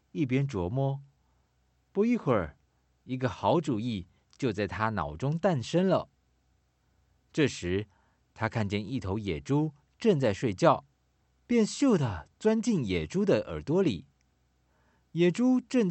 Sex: male